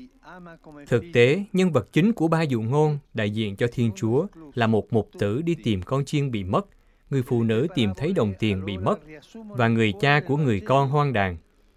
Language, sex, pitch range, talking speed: Vietnamese, male, 115-165 Hz, 210 wpm